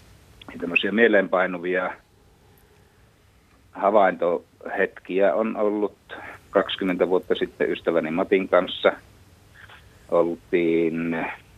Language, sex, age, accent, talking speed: Finnish, male, 50-69, native, 60 wpm